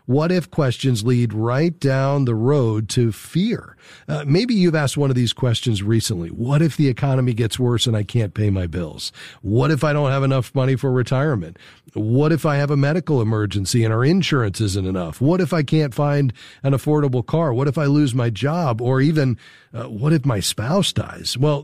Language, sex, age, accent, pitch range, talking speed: English, male, 40-59, American, 120-160 Hz, 210 wpm